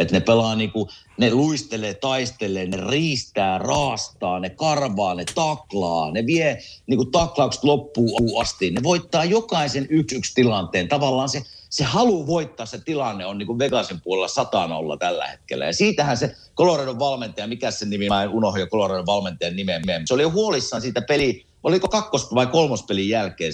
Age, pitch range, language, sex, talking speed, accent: 50-69, 105-150 Hz, Finnish, male, 165 wpm, native